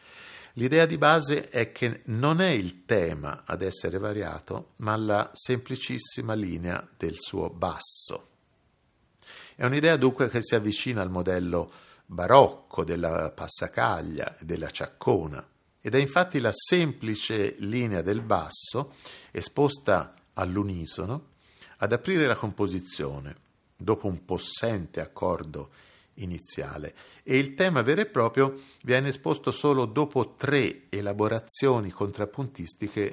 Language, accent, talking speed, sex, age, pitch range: Italian, native, 120 wpm, male, 50-69, 90-130 Hz